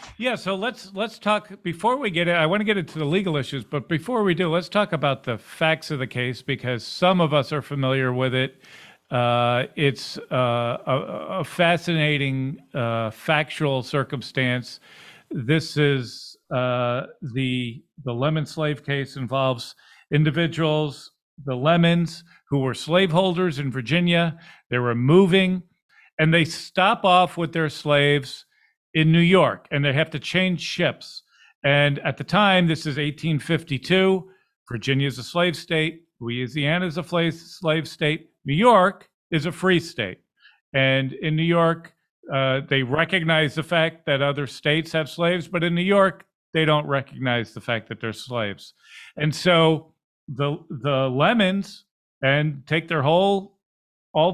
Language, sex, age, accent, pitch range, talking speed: English, male, 50-69, American, 135-175 Hz, 150 wpm